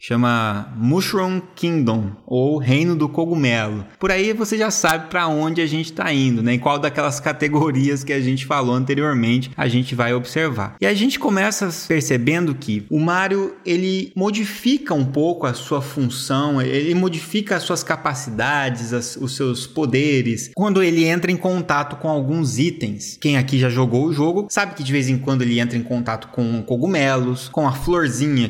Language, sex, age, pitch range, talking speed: Portuguese, male, 20-39, 125-160 Hz, 180 wpm